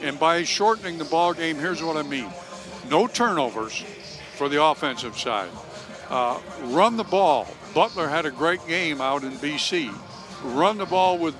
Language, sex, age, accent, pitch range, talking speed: English, male, 60-79, American, 155-195 Hz, 170 wpm